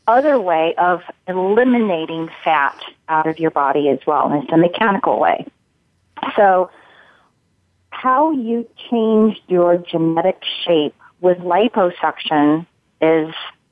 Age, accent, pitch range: 40-59, American, 160-195 Hz